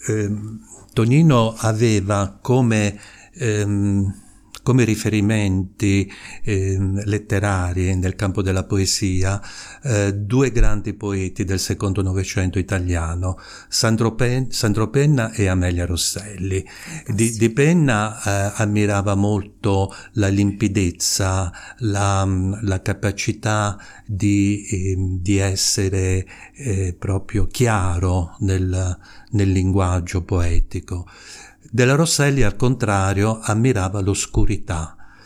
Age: 50-69